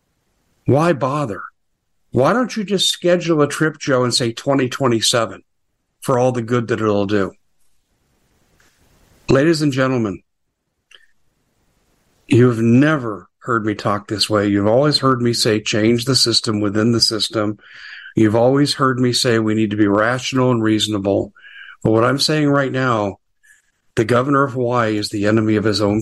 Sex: male